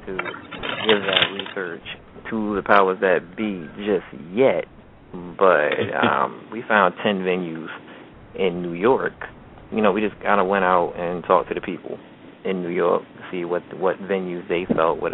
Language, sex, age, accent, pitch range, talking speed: English, male, 30-49, American, 90-100 Hz, 175 wpm